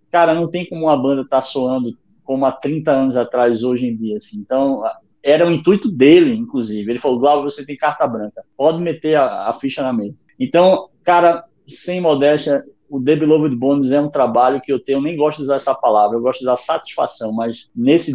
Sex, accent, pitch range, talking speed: male, Brazilian, 125-160 Hz, 215 wpm